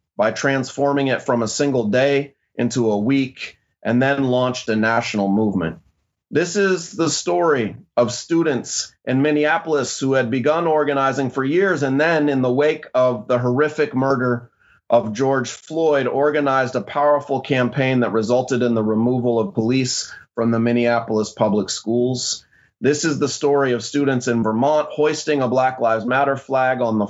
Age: 30-49